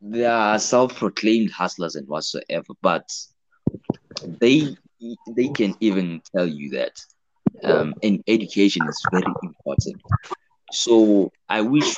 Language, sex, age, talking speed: English, male, 20-39, 115 wpm